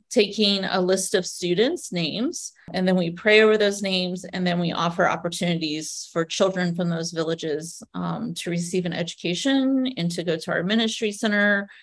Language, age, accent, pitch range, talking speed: English, 30-49, American, 175-215 Hz, 180 wpm